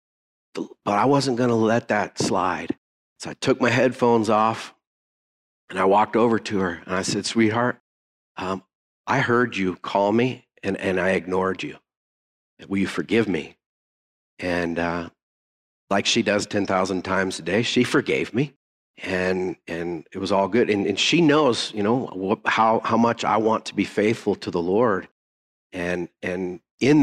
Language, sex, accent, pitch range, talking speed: English, male, American, 90-115 Hz, 170 wpm